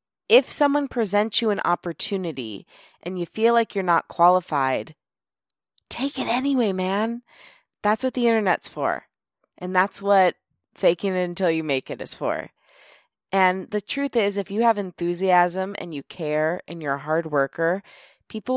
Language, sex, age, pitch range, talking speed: English, female, 20-39, 155-205 Hz, 160 wpm